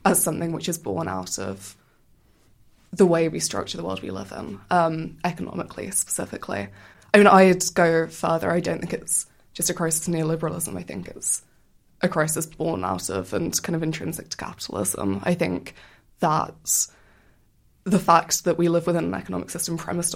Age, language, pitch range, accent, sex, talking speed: 20-39, English, 155-180 Hz, British, female, 180 wpm